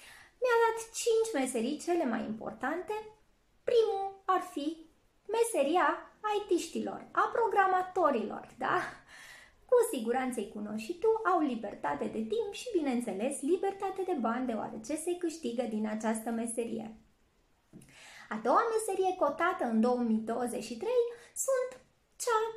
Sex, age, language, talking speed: female, 20-39, Romanian, 115 wpm